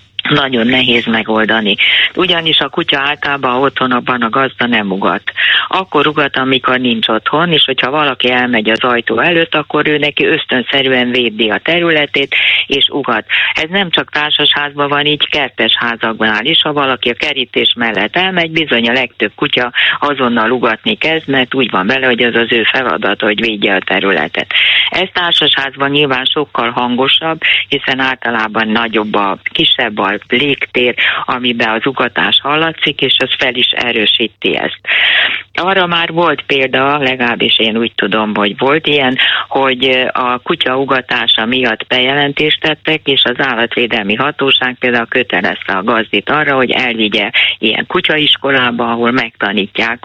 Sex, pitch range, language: female, 115-145 Hz, Hungarian